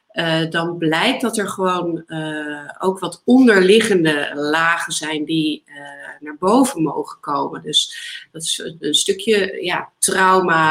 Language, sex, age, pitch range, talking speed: Dutch, female, 30-49, 155-205 Hz, 140 wpm